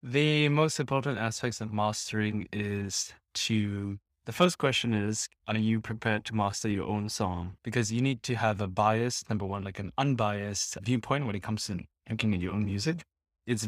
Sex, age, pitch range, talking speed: male, 20-39, 100-120 Hz, 190 wpm